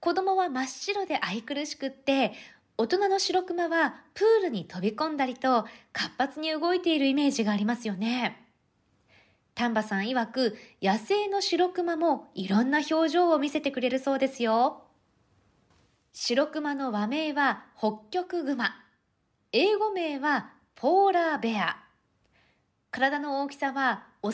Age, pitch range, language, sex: 20-39, 225-330 Hz, Japanese, female